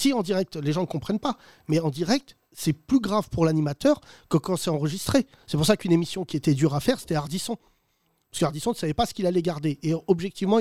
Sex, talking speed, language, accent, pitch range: male, 245 wpm, French, French, 150-195 Hz